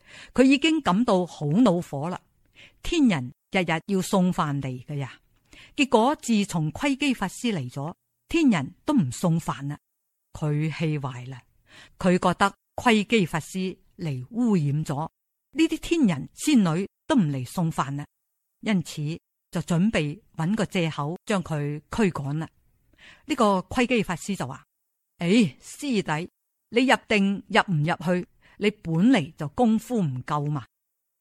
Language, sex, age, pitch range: Chinese, female, 50-69, 155-220 Hz